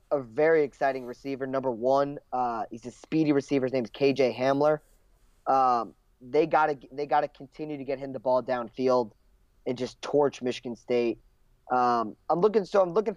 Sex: male